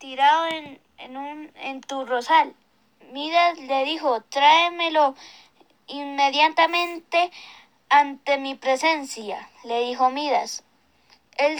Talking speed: 100 wpm